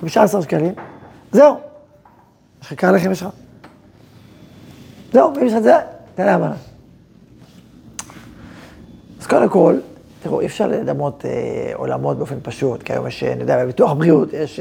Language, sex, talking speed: Hebrew, male, 145 wpm